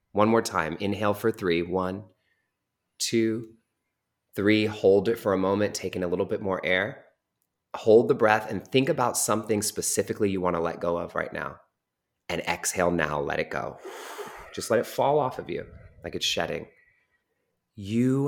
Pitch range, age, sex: 85-105 Hz, 30-49, male